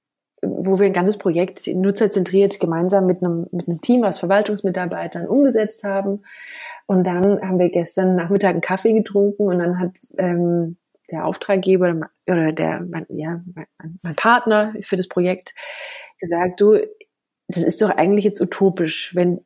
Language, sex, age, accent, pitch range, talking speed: German, female, 20-39, German, 175-205 Hz, 155 wpm